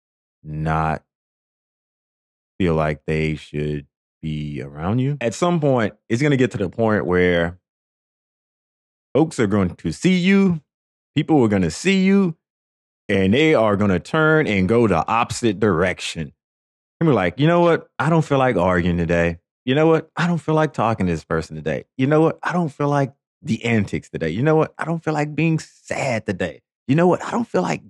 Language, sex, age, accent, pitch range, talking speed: English, male, 30-49, American, 85-140 Hz, 200 wpm